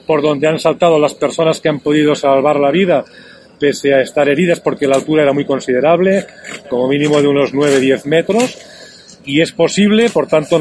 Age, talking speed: 40-59, 185 wpm